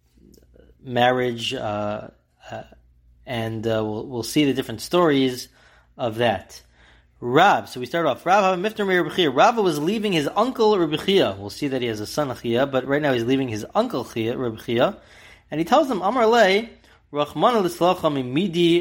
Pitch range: 110-160 Hz